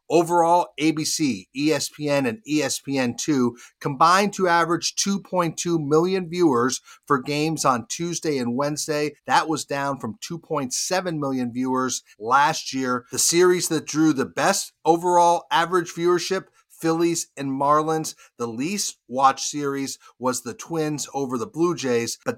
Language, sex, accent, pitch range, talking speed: English, male, American, 130-170 Hz, 135 wpm